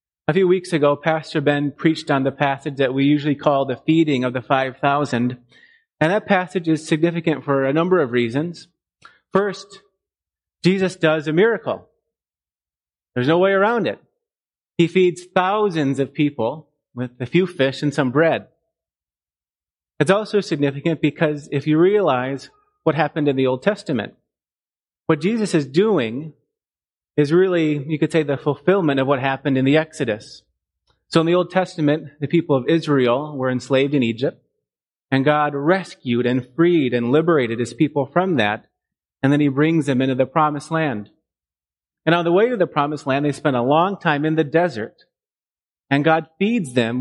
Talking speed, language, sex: 170 wpm, English, male